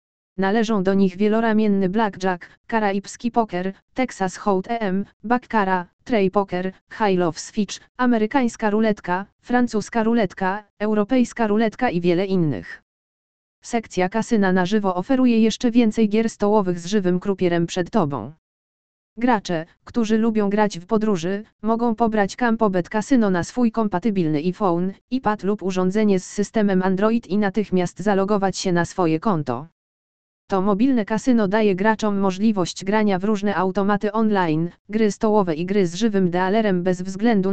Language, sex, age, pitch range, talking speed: Polish, female, 20-39, 185-220 Hz, 140 wpm